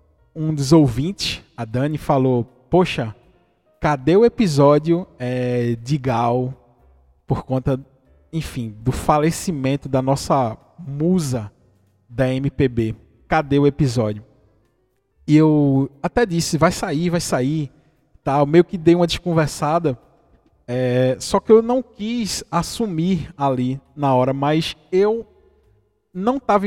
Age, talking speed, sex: 20-39, 120 wpm, male